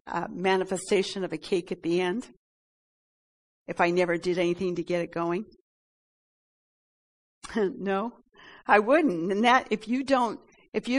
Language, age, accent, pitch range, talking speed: English, 60-79, American, 185-230 Hz, 145 wpm